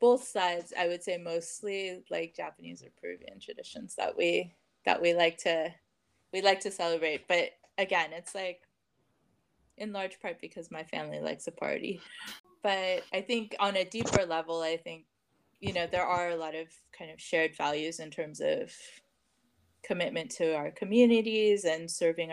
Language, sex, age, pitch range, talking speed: English, female, 20-39, 155-180 Hz, 170 wpm